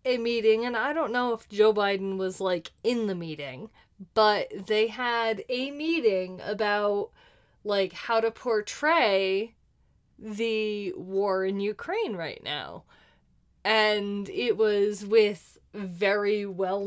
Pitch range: 190-240 Hz